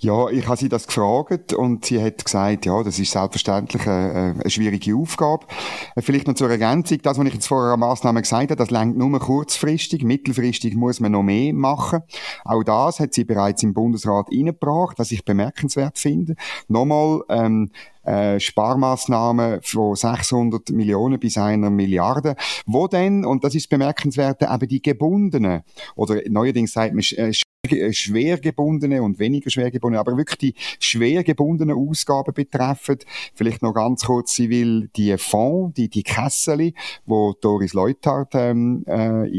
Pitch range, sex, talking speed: 105-140 Hz, male, 155 wpm